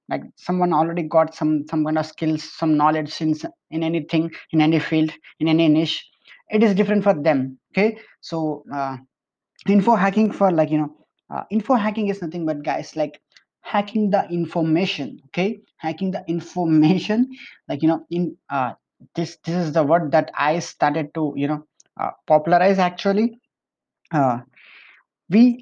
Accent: Indian